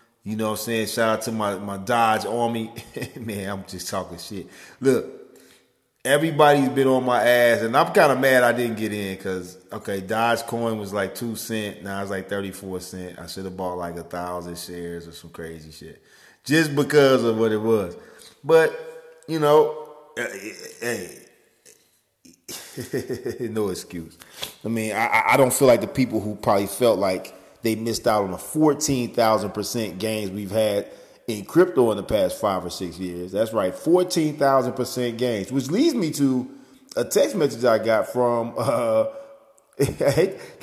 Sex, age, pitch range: male, 30-49, 100-145 Hz